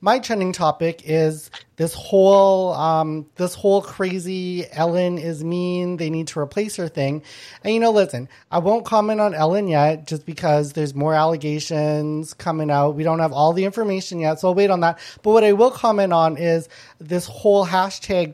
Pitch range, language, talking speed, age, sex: 165-210 Hz, English, 190 wpm, 30-49, male